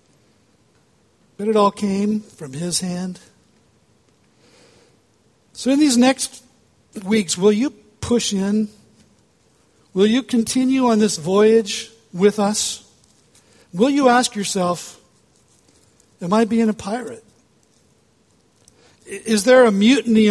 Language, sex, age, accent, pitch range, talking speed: English, male, 60-79, American, 170-220 Hz, 110 wpm